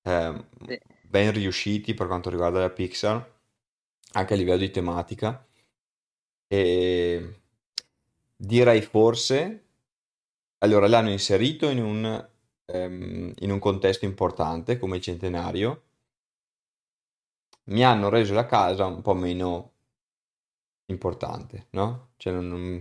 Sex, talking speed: male, 110 wpm